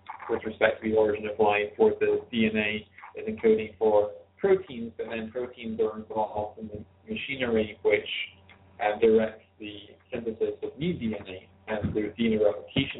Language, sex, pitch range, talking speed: English, male, 100-120 Hz, 160 wpm